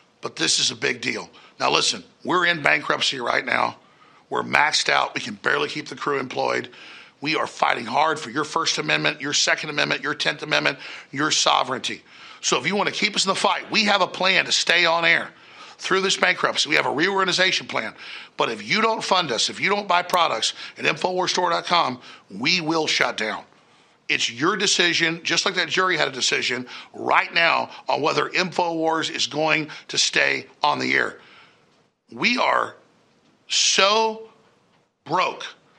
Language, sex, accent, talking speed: English, male, American, 180 wpm